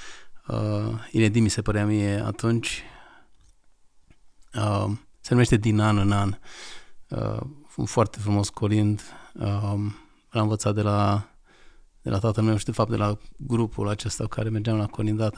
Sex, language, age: male, Romanian, 30-49